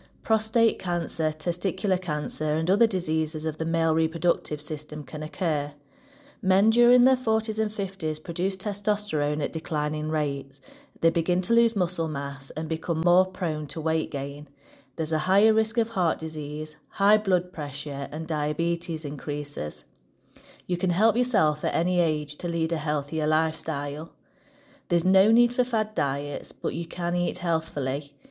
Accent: British